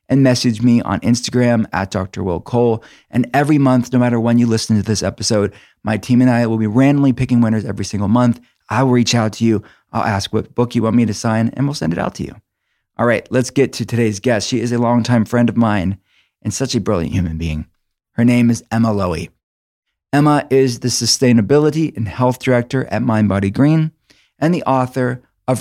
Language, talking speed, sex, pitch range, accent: English, 220 wpm, male, 110-130 Hz, American